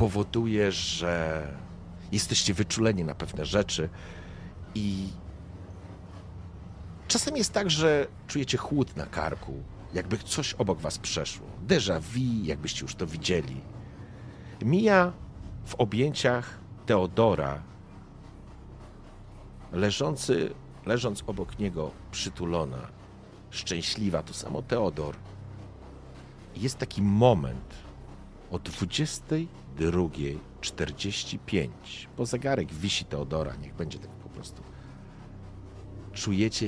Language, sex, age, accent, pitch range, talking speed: Polish, male, 50-69, native, 85-120 Hz, 95 wpm